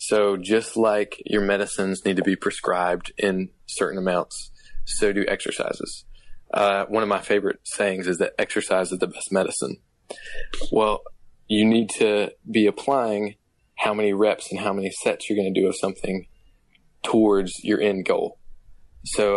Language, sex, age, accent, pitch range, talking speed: English, male, 20-39, American, 95-110 Hz, 160 wpm